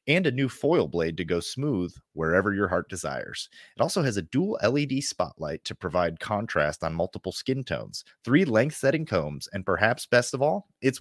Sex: male